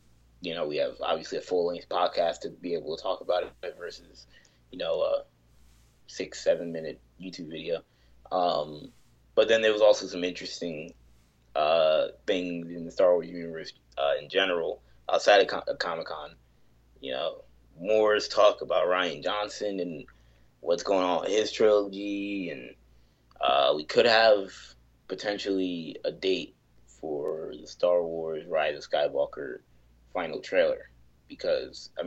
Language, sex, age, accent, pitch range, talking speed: English, male, 20-39, American, 65-105 Hz, 155 wpm